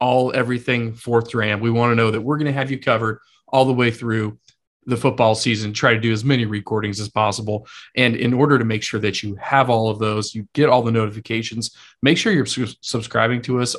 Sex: male